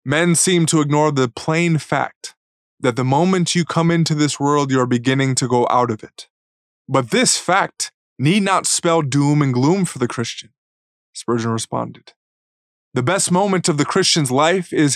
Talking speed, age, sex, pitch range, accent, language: 180 wpm, 20-39, male, 125-165 Hz, American, English